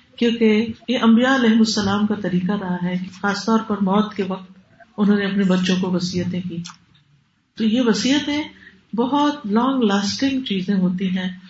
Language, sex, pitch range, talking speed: Urdu, female, 185-225 Hz, 150 wpm